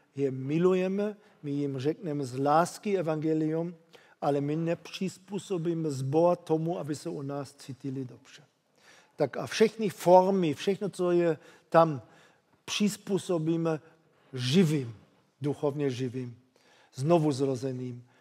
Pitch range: 140-165 Hz